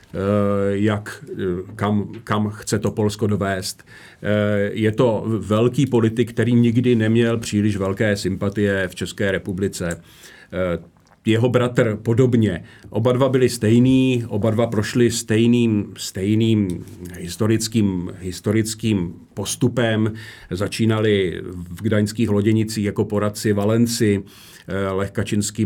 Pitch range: 100-115 Hz